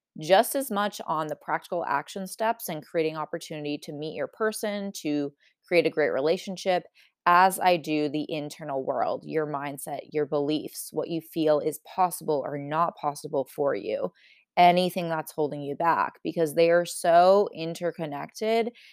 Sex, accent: female, American